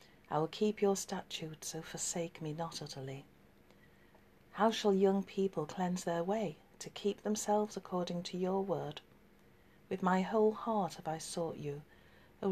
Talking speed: 160 wpm